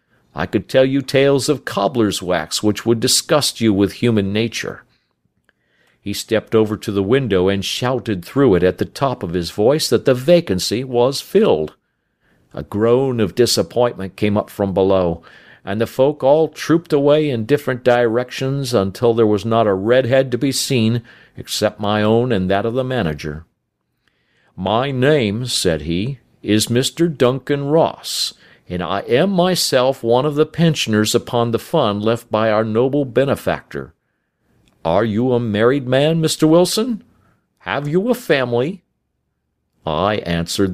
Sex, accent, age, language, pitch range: male, American, 50-69, Korean, 100-130 Hz